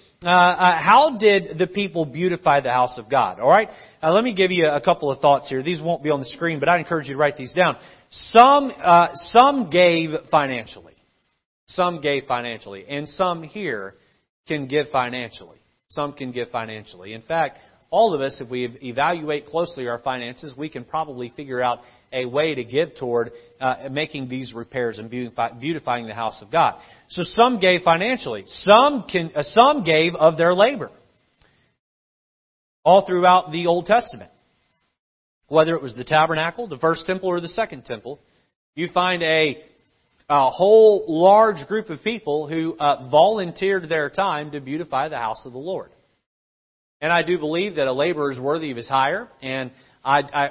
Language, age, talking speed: English, 40-59, 180 wpm